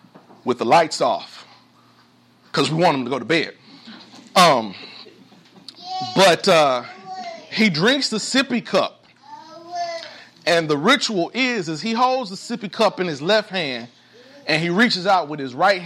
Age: 40-59